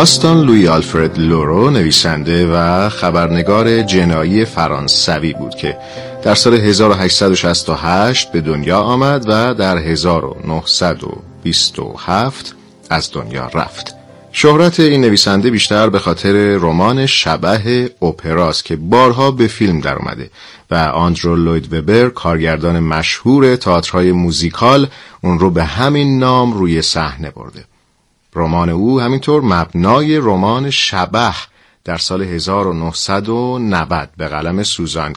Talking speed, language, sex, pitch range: 110 wpm, Persian, male, 85-120 Hz